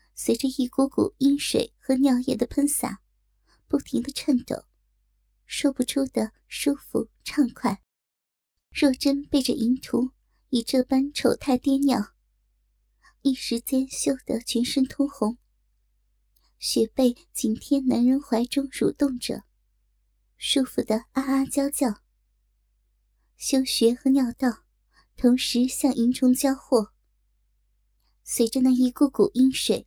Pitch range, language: 235-270 Hz, Chinese